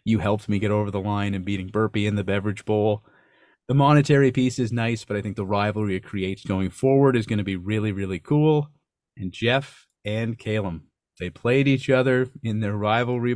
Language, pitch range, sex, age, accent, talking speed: English, 100-130 Hz, male, 30-49, American, 205 wpm